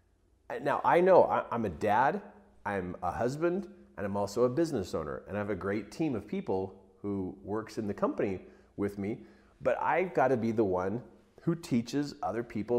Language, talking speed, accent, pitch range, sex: English, 190 wpm, American, 95-125 Hz, male